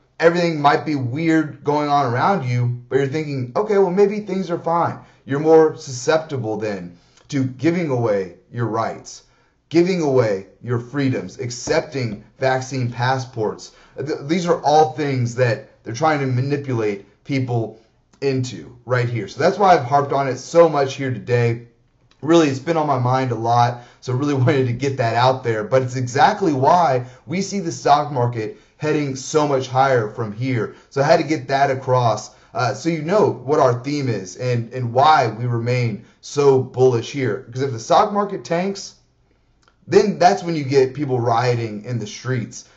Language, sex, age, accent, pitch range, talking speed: English, male, 30-49, American, 120-150 Hz, 180 wpm